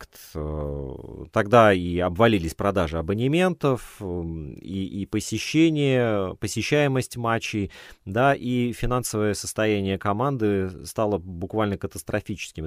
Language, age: Russian, 30-49